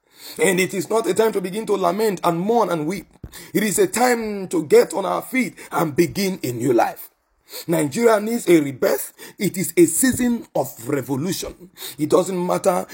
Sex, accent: male, Nigerian